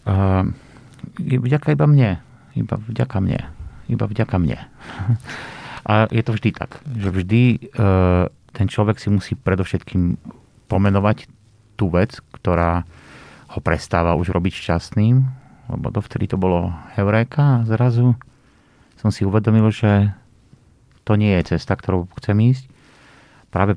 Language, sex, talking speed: Slovak, male, 130 wpm